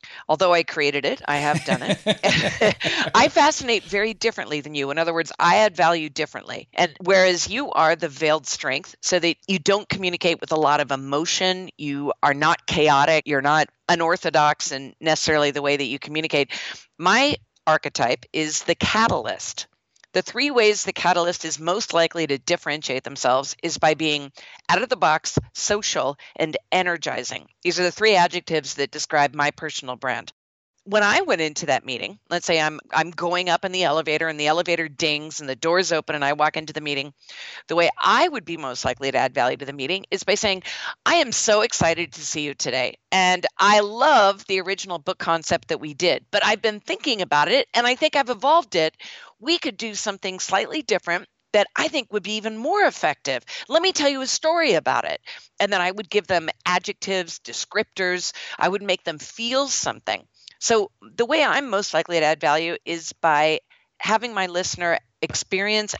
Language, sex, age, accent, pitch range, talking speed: English, female, 50-69, American, 150-200 Hz, 195 wpm